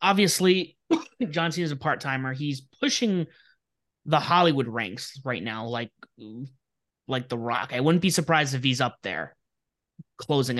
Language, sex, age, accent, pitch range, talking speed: English, male, 20-39, American, 130-180 Hz, 145 wpm